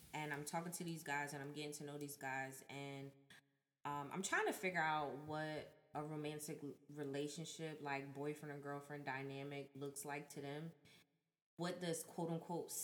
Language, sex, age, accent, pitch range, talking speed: English, female, 20-39, American, 150-180 Hz, 170 wpm